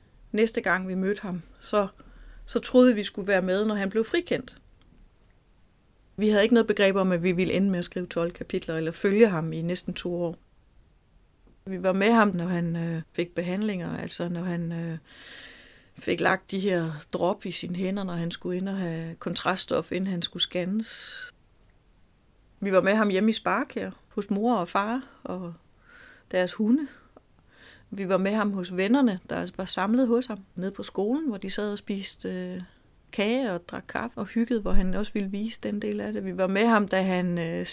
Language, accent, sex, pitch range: Danish, native, female, 180-235 Hz